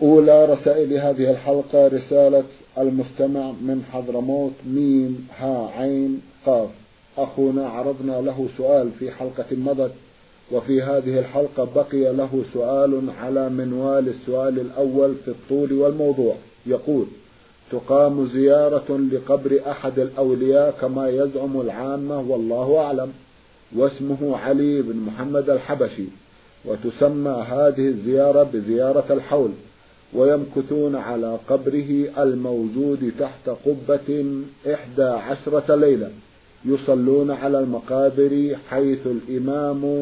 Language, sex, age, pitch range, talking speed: Arabic, male, 50-69, 130-145 Hz, 100 wpm